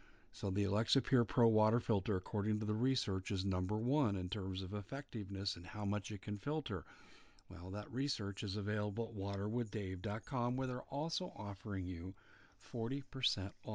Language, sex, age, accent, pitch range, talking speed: English, male, 50-69, American, 100-125 Hz, 160 wpm